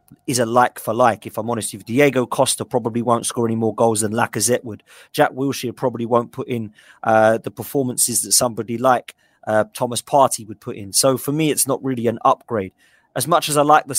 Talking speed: 225 wpm